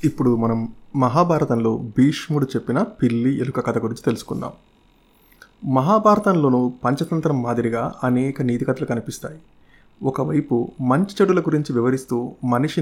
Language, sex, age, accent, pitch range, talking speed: Telugu, male, 30-49, native, 125-155 Hz, 110 wpm